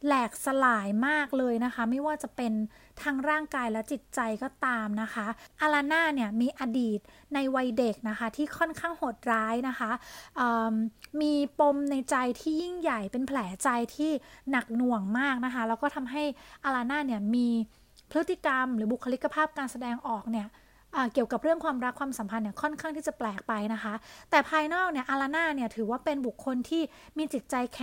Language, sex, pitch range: Thai, female, 235-300 Hz